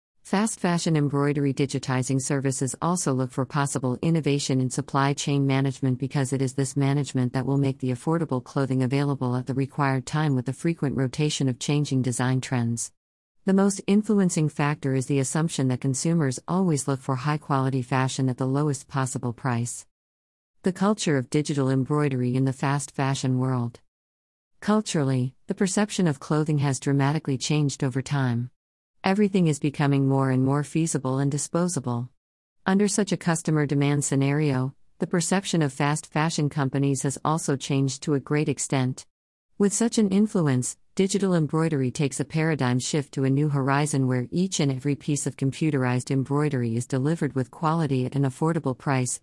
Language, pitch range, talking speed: English, 130-155 Hz, 165 wpm